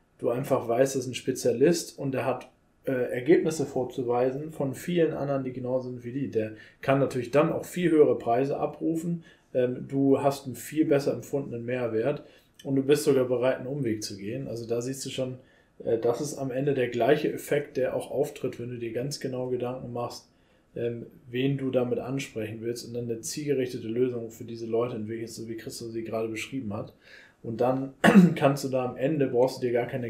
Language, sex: German, male